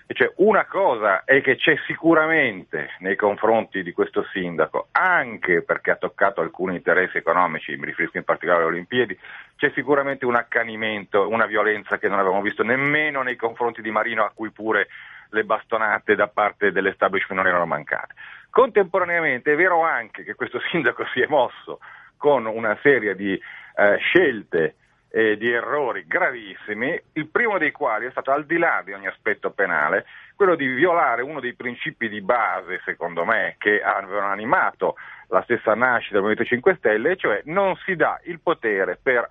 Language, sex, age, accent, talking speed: Italian, male, 40-59, native, 170 wpm